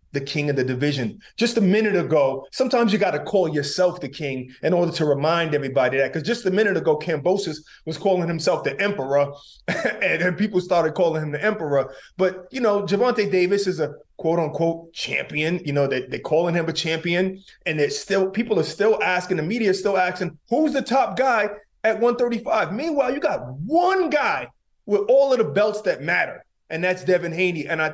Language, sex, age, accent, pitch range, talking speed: English, male, 30-49, American, 150-220 Hz, 200 wpm